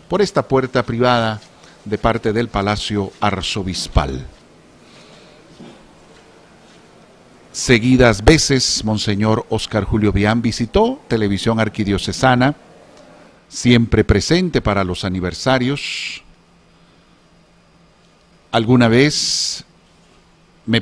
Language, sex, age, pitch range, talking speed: Spanish, male, 50-69, 100-130 Hz, 75 wpm